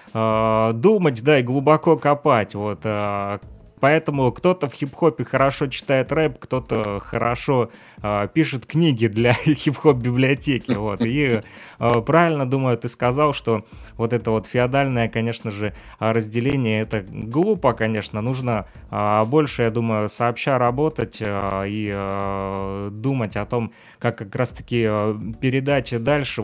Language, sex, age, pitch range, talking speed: Russian, male, 20-39, 105-125 Hz, 120 wpm